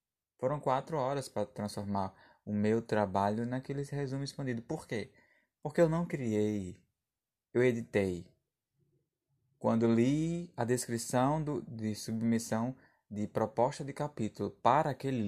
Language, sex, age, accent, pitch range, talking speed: Portuguese, male, 20-39, Brazilian, 105-135 Hz, 120 wpm